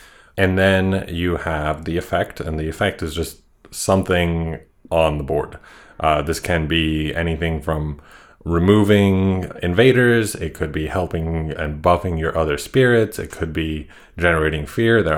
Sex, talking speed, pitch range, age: male, 150 wpm, 80-95 Hz, 30-49